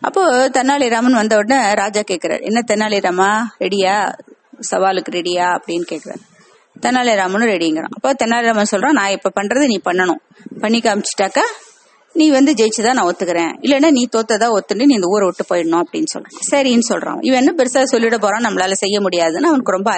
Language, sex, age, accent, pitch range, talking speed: Tamil, female, 30-49, native, 195-260 Hz, 145 wpm